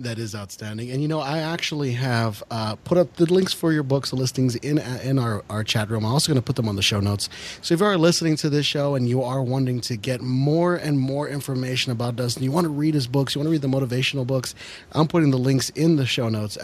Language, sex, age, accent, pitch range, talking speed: English, male, 30-49, American, 110-145 Hz, 280 wpm